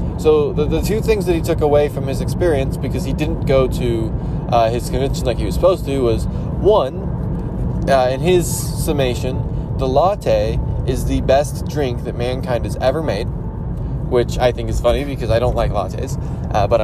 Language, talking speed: English, 195 wpm